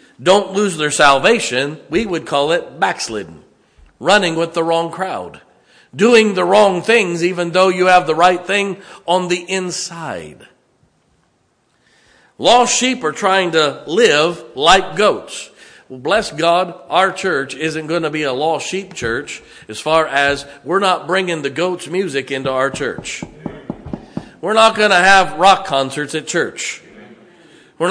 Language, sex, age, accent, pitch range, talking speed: English, male, 50-69, American, 155-200 Hz, 150 wpm